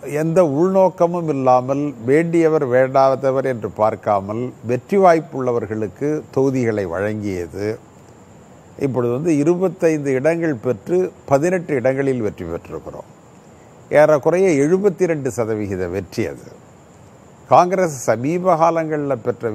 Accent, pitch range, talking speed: native, 120-170 Hz, 90 wpm